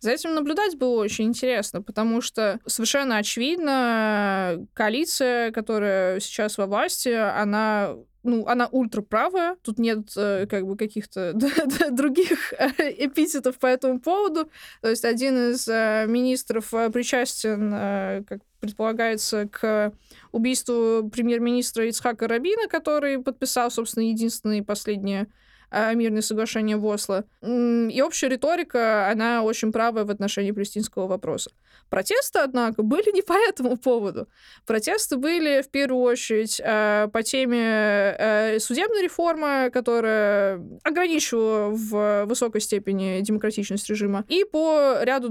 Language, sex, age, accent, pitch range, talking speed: Russian, female, 20-39, native, 210-270 Hz, 115 wpm